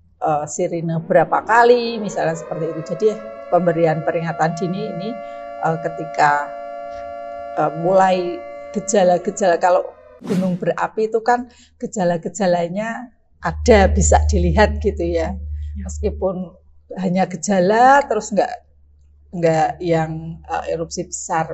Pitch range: 150-195 Hz